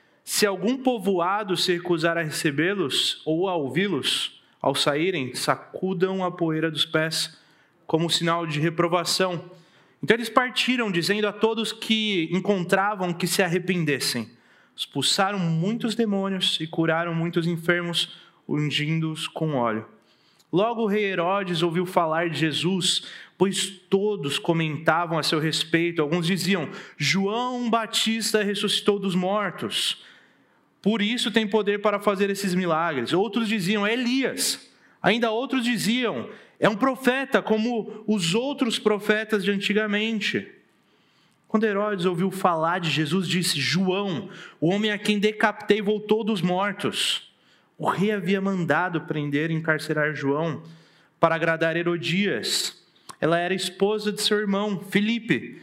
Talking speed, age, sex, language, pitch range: 130 wpm, 30-49, male, Portuguese, 165-210 Hz